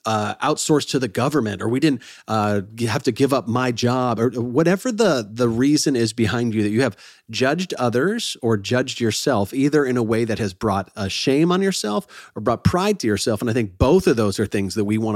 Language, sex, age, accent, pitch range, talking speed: English, male, 40-59, American, 100-130 Hz, 230 wpm